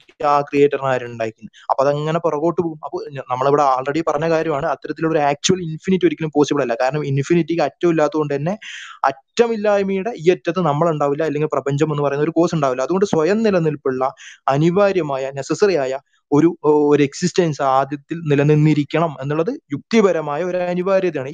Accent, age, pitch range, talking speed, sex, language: native, 20-39, 145-175 Hz, 130 wpm, male, Malayalam